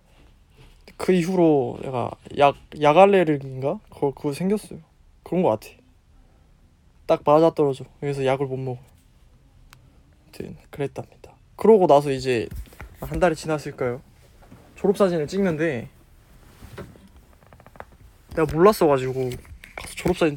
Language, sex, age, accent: Korean, male, 20-39, native